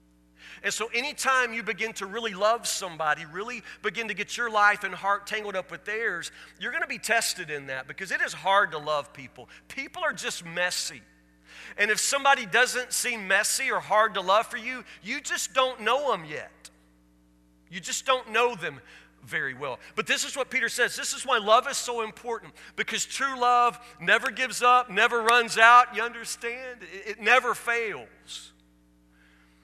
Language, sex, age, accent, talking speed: English, male, 40-59, American, 185 wpm